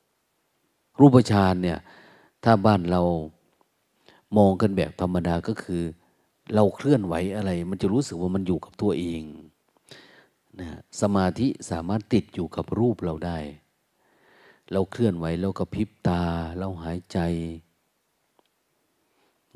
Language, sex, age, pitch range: Thai, male, 30-49, 85-105 Hz